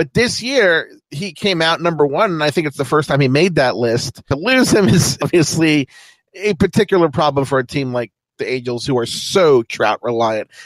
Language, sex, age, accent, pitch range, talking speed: English, male, 40-59, American, 130-185 Hz, 215 wpm